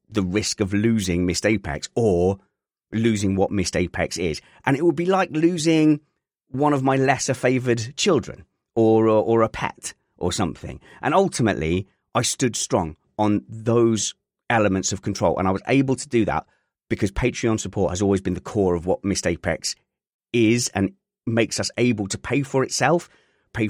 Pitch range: 90-125 Hz